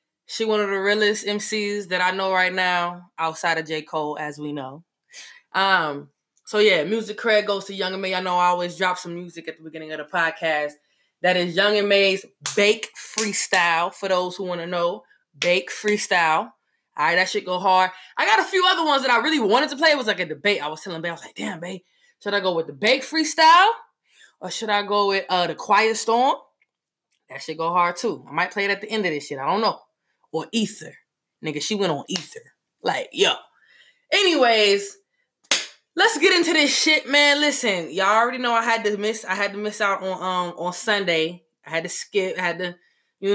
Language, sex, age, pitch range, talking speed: English, female, 20-39, 175-245 Hz, 225 wpm